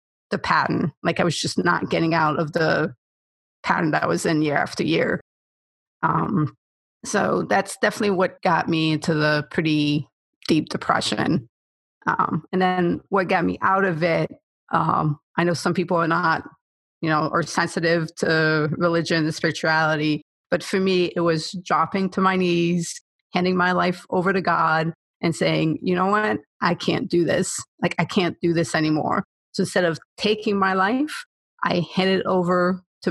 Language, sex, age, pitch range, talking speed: English, female, 30-49, 160-200 Hz, 175 wpm